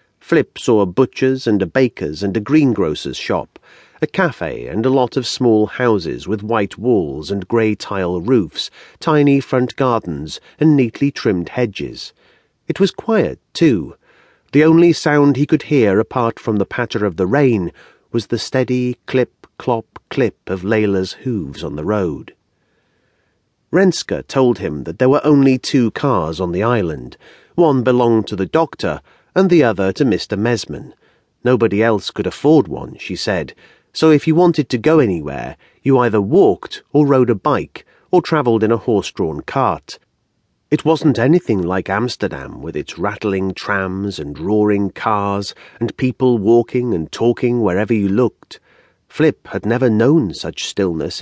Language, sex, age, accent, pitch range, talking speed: English, male, 40-59, British, 105-145 Hz, 160 wpm